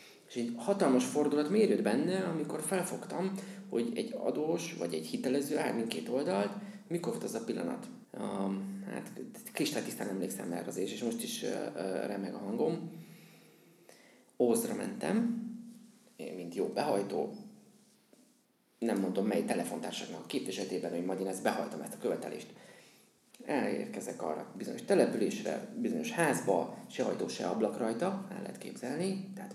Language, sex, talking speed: Hungarian, male, 140 wpm